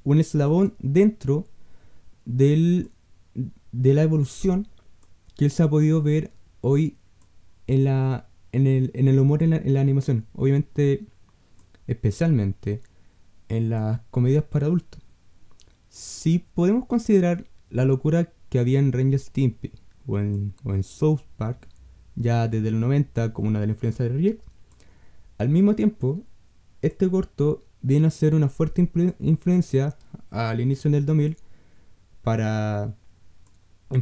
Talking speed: 140 wpm